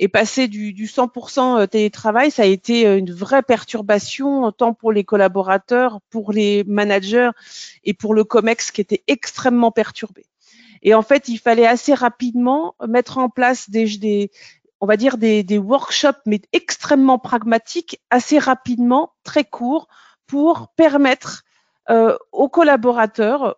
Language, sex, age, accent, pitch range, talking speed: English, female, 40-59, French, 200-255 Hz, 145 wpm